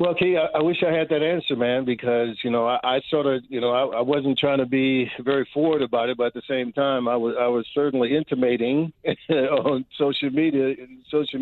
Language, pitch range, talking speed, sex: English, 125-150 Hz, 245 wpm, male